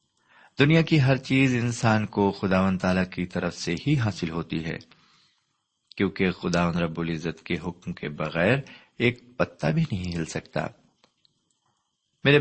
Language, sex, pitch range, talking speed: Urdu, male, 90-125 Hz, 140 wpm